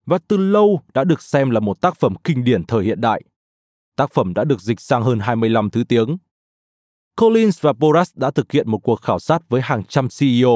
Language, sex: Vietnamese, male